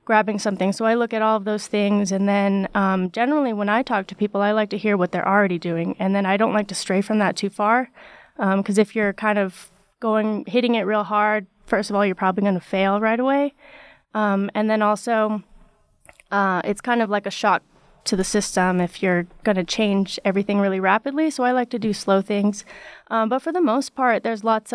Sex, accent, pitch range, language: female, American, 195-220 Hz, English